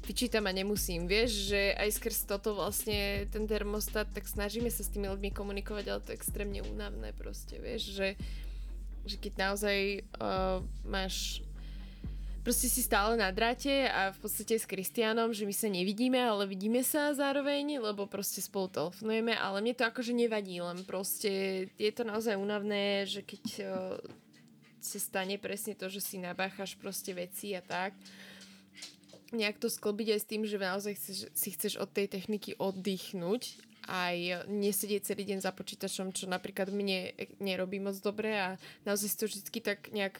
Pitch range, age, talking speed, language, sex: 190-215 Hz, 20-39, 165 wpm, Slovak, female